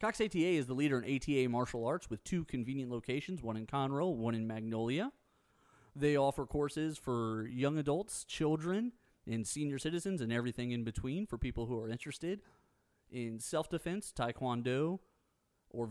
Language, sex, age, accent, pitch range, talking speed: English, male, 30-49, American, 110-145 Hz, 160 wpm